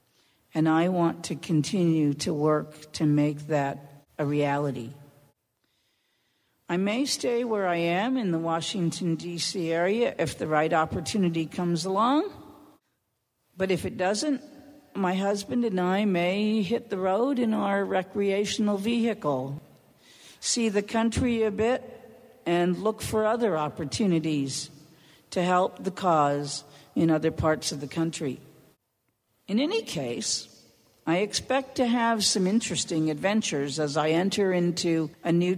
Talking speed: 135 wpm